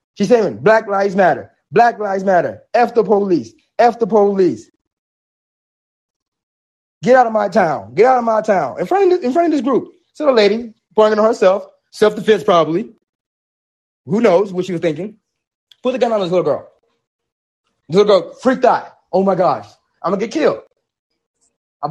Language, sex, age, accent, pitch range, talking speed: English, male, 30-49, American, 185-230 Hz, 185 wpm